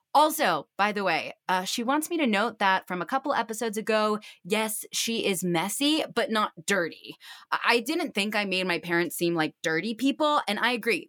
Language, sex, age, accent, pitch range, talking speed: English, female, 20-39, American, 185-270 Hz, 200 wpm